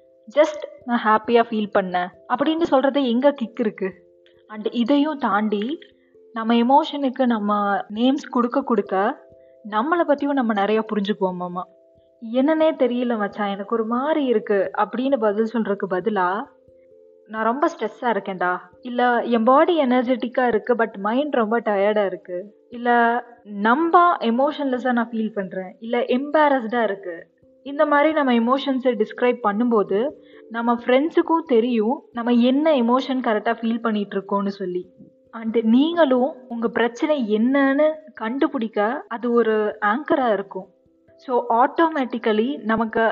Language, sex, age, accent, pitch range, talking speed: Tamil, female, 20-39, native, 210-260 Hz, 120 wpm